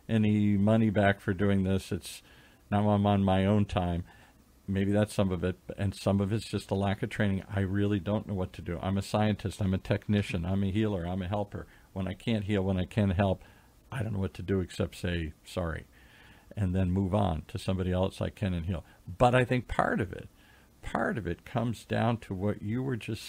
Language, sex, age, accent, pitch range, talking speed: English, male, 50-69, American, 95-110 Hz, 235 wpm